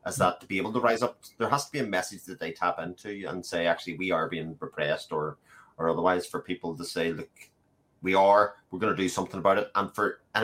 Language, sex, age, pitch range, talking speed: English, male, 30-49, 90-125 Hz, 255 wpm